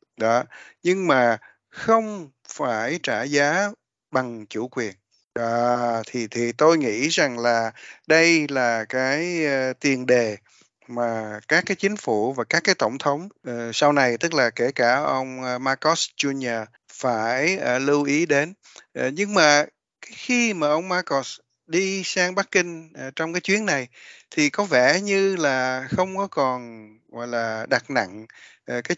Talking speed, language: 150 wpm, Vietnamese